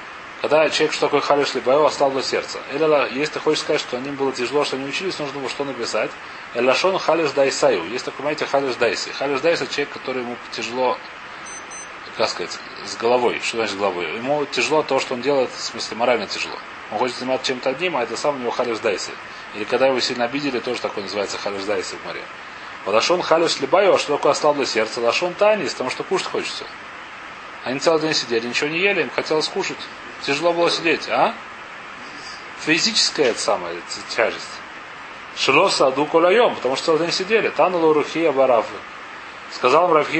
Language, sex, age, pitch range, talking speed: Russian, male, 30-49, 130-180 Hz, 180 wpm